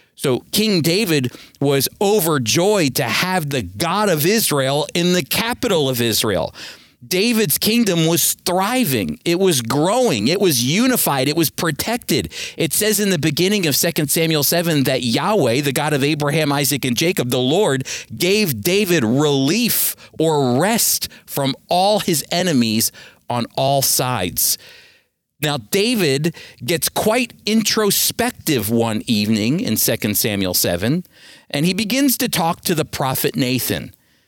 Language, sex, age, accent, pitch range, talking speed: English, male, 40-59, American, 140-195 Hz, 140 wpm